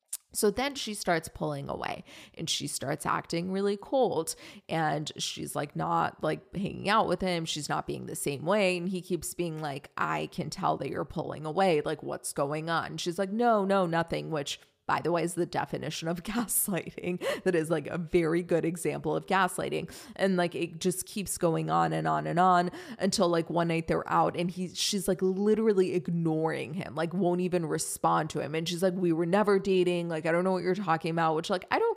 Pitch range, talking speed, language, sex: 160-185 Hz, 215 wpm, English, female